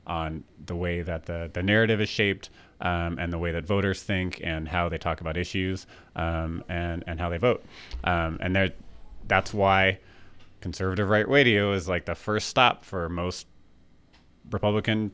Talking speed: 170 wpm